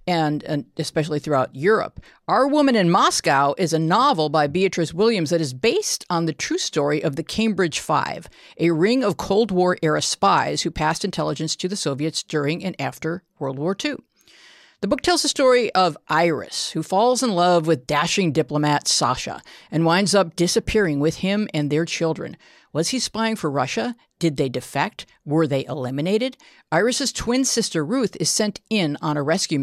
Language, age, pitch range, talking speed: English, 50-69, 150-195 Hz, 180 wpm